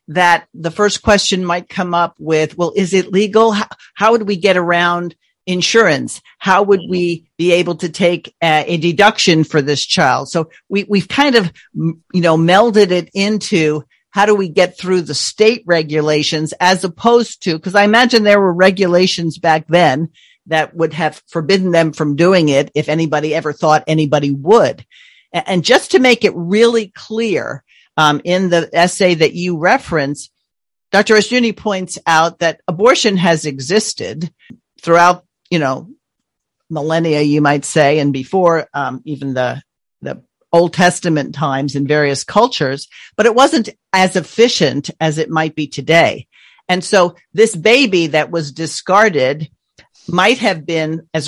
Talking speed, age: 160 wpm, 50-69